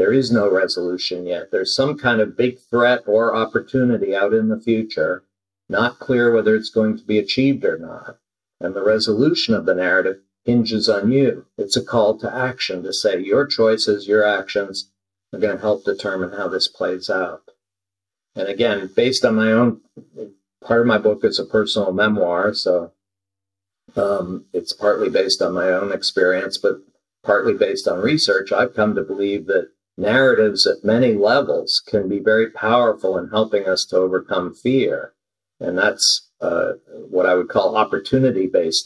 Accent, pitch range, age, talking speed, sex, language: American, 95-140 Hz, 50-69, 170 wpm, male, English